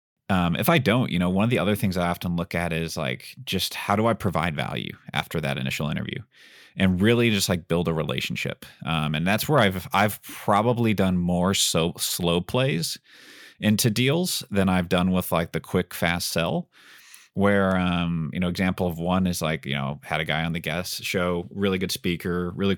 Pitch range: 85-100 Hz